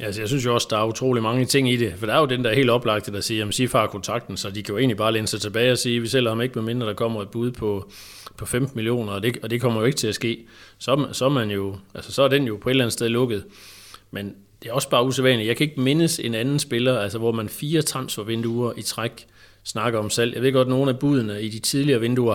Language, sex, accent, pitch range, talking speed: Danish, male, native, 105-130 Hz, 305 wpm